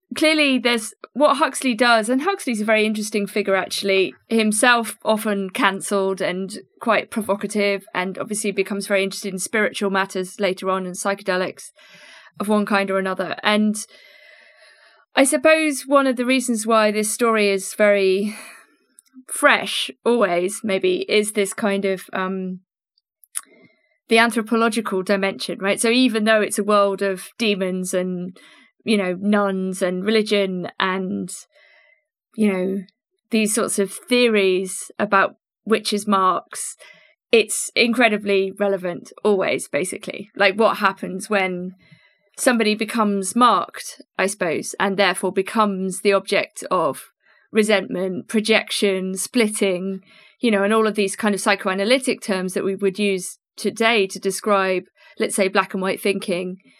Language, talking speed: English, 135 wpm